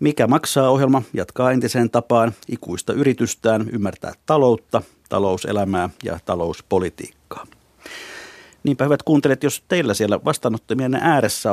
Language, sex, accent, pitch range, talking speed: Finnish, male, native, 105-135 Hz, 110 wpm